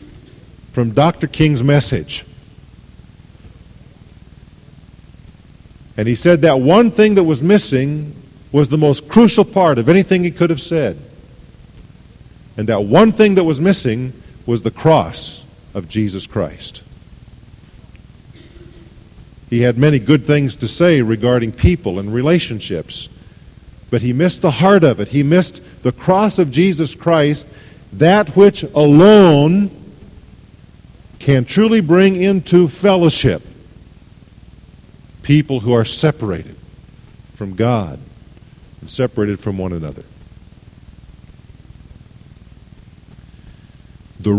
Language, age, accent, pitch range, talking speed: English, 50-69, American, 110-165 Hz, 110 wpm